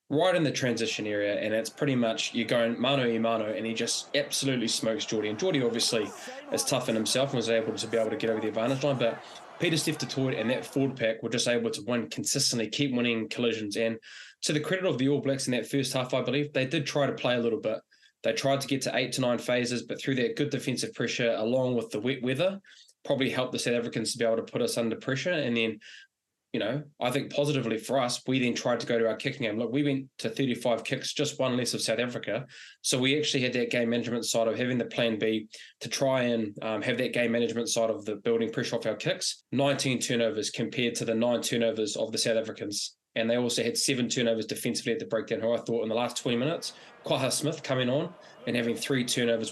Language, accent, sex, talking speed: English, Australian, male, 255 wpm